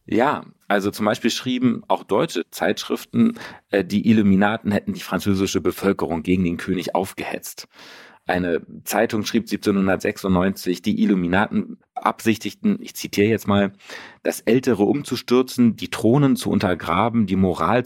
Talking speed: 130 wpm